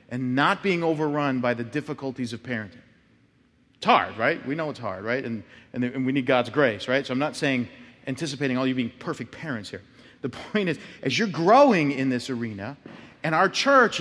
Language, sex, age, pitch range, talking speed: English, male, 40-59, 125-170 Hz, 210 wpm